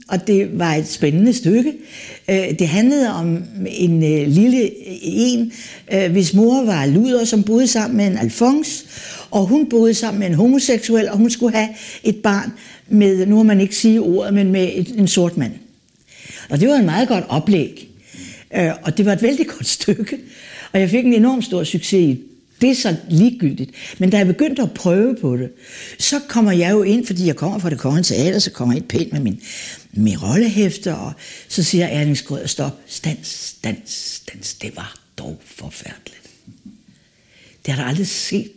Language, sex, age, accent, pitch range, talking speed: Danish, female, 60-79, native, 175-235 Hz, 185 wpm